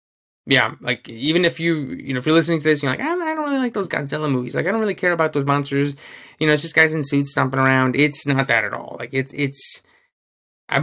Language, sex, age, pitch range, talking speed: English, male, 20-39, 125-150 Hz, 260 wpm